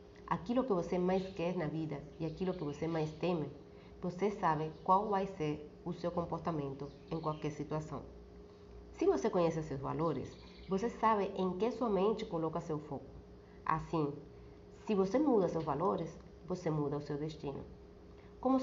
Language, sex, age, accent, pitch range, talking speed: Portuguese, female, 30-49, American, 155-200 Hz, 160 wpm